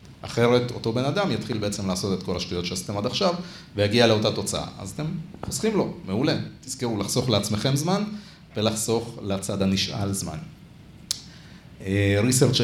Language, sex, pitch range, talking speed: Hebrew, male, 100-140 Hz, 140 wpm